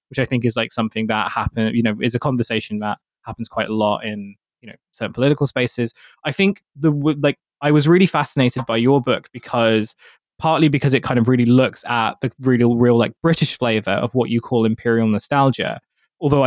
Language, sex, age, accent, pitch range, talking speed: English, male, 20-39, British, 115-140 Hz, 210 wpm